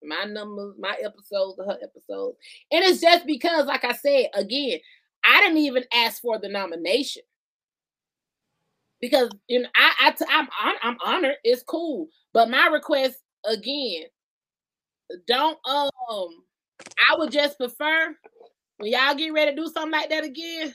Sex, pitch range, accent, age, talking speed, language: female, 245-335 Hz, American, 20-39, 150 wpm, English